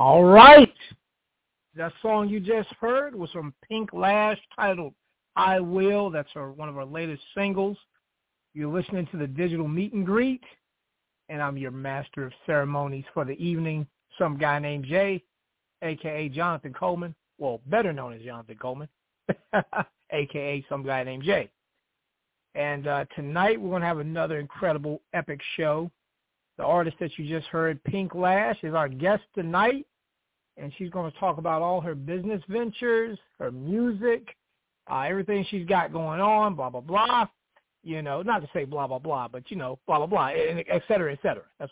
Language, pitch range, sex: English, 145-195 Hz, male